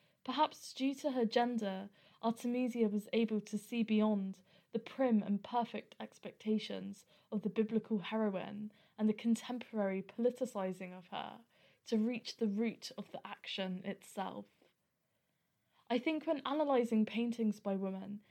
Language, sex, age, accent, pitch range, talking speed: English, female, 10-29, British, 205-245 Hz, 135 wpm